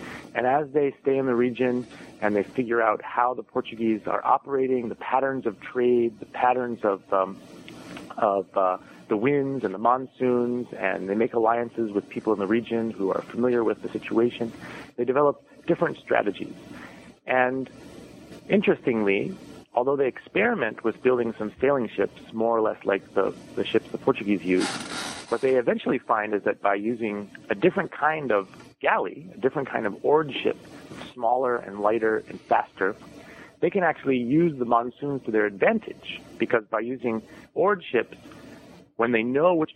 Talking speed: 170 wpm